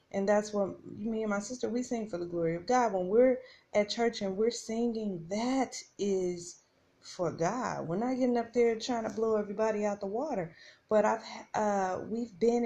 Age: 30-49